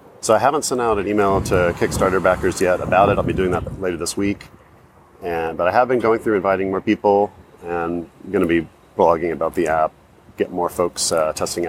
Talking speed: 215 wpm